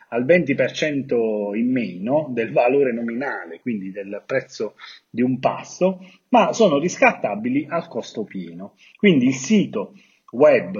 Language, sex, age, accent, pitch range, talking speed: Italian, male, 40-59, native, 130-195 Hz, 130 wpm